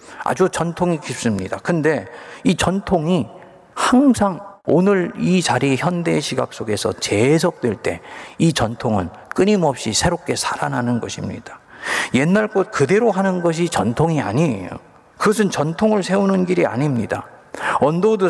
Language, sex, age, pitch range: Korean, male, 40-59, 115-180 Hz